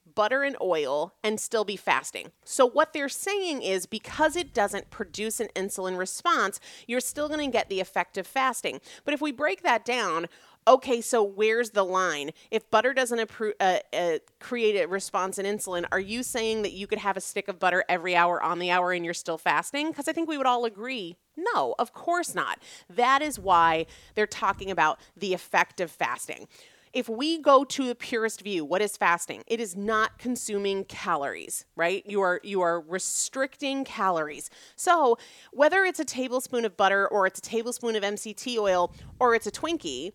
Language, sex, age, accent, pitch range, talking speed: English, female, 30-49, American, 190-265 Hz, 195 wpm